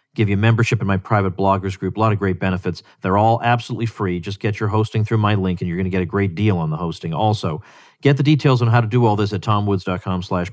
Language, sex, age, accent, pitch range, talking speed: English, male, 40-59, American, 95-120 Hz, 275 wpm